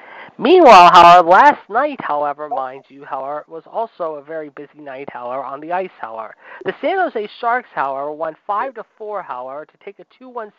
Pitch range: 140-200 Hz